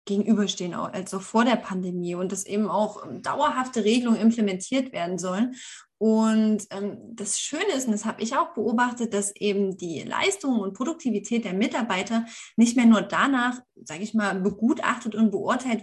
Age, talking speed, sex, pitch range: 20-39, 160 wpm, female, 200-245 Hz